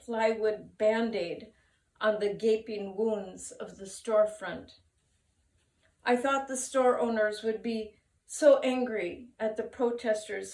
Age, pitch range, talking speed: 40-59, 200-265 Hz, 120 wpm